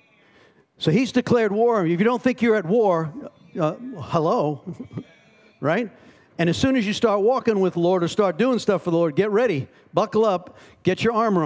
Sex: male